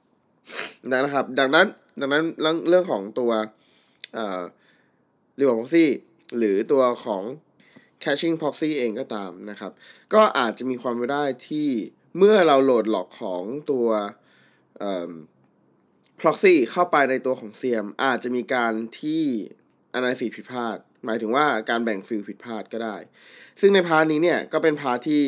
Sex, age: male, 20-39